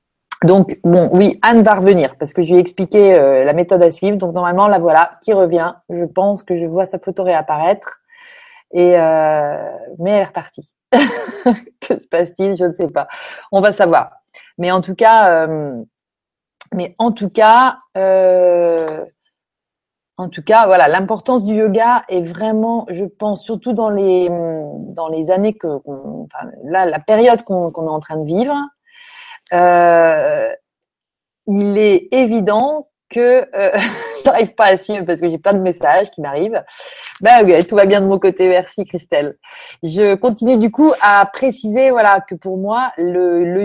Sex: female